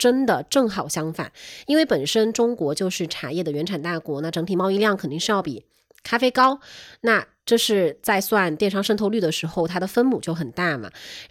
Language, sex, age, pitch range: Chinese, female, 20-39, 165-230 Hz